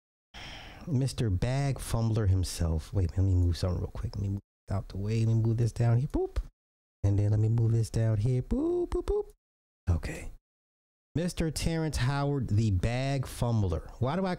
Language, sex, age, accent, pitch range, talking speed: English, male, 30-49, American, 95-125 Hz, 190 wpm